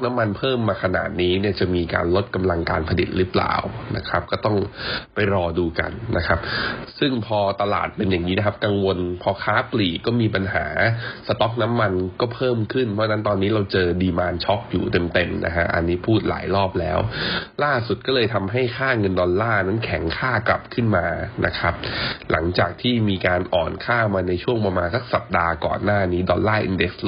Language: Thai